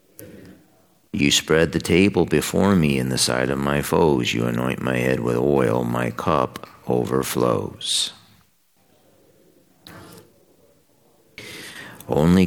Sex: male